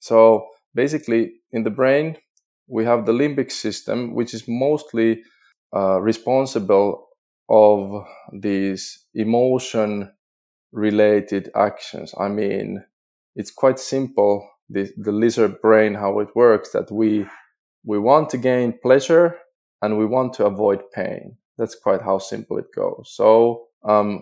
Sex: male